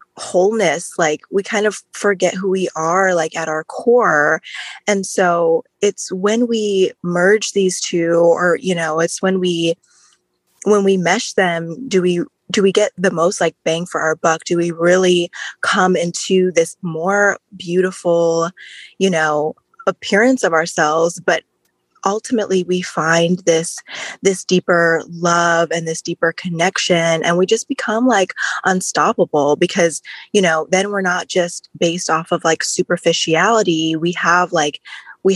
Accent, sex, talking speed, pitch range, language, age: American, female, 155 wpm, 160-185 Hz, English, 20-39